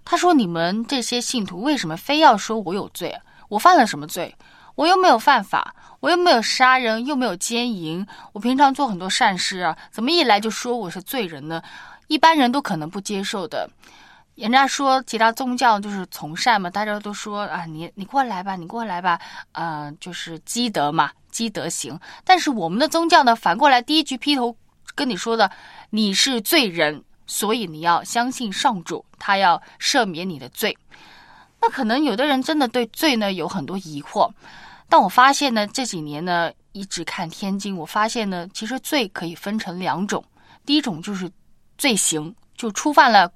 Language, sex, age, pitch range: Chinese, female, 20-39, 185-275 Hz